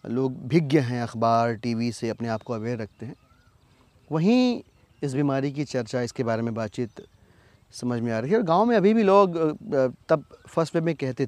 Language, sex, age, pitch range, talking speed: Hindi, male, 30-49, 110-170 Hz, 195 wpm